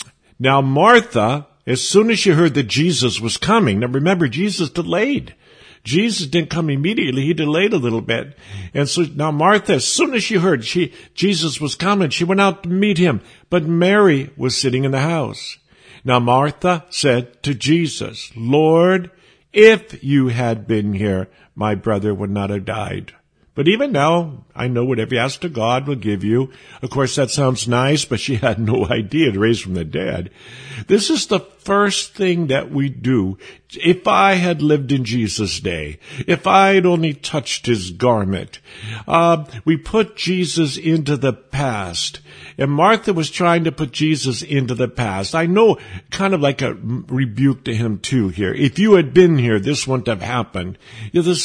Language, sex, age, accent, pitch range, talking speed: English, male, 50-69, American, 120-170 Hz, 180 wpm